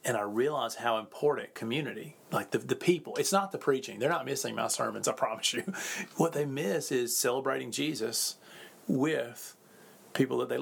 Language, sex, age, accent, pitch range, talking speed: English, male, 40-59, American, 115-145 Hz, 180 wpm